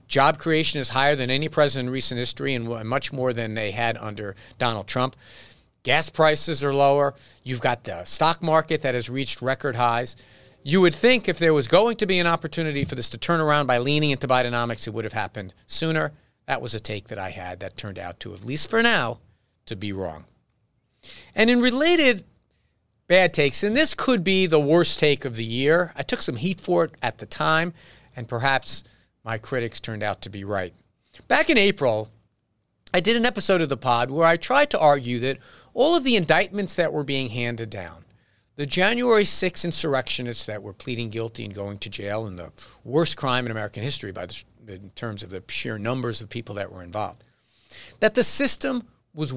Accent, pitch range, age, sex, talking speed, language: American, 110-160 Hz, 50-69, male, 205 wpm, English